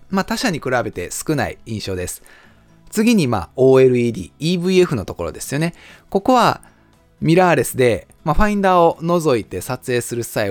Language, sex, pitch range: Japanese, male, 110-175 Hz